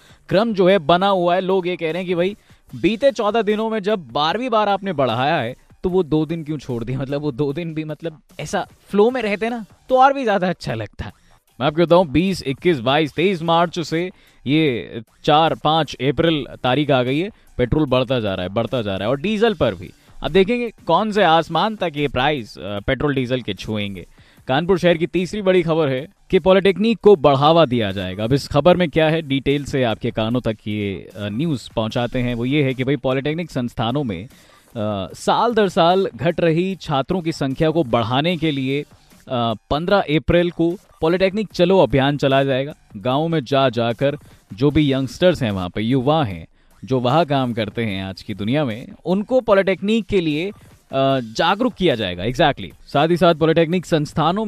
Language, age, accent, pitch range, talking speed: Hindi, 20-39, native, 130-180 Hz, 185 wpm